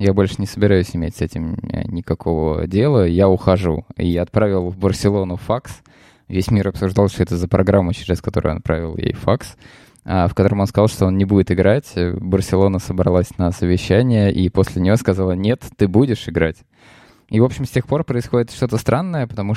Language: Russian